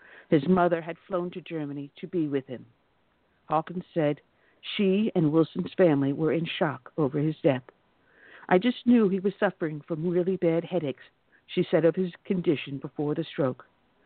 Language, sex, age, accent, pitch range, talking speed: English, female, 60-79, American, 150-185 Hz, 170 wpm